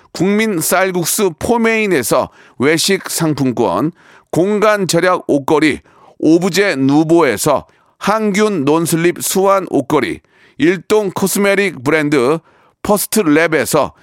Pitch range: 160-215 Hz